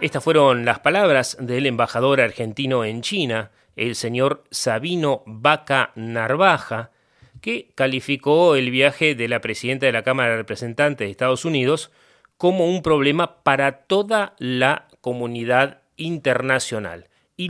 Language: Spanish